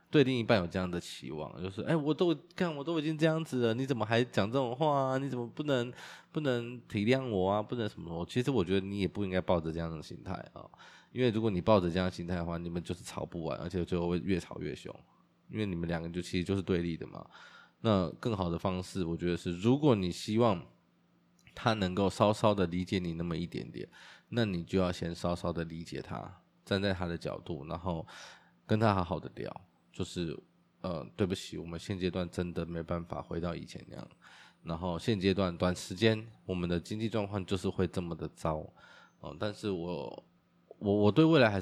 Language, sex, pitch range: Chinese, male, 90-115 Hz